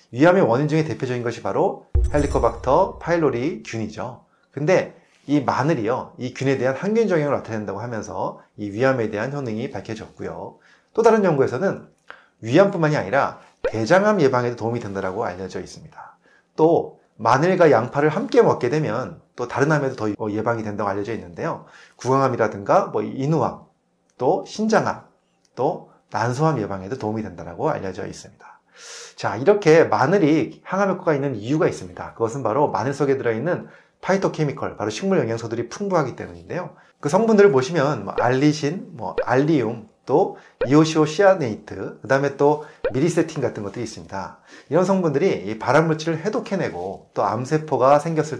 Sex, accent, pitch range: male, native, 110-160 Hz